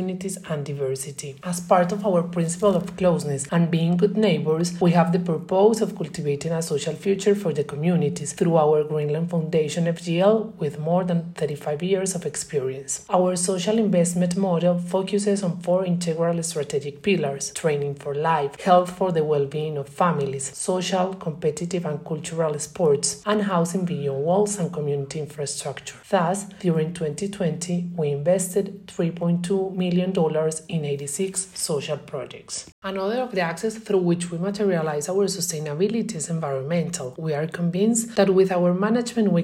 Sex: male